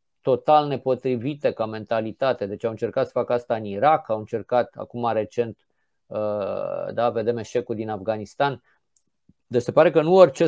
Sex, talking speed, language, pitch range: male, 155 wpm, Romanian, 120-155 Hz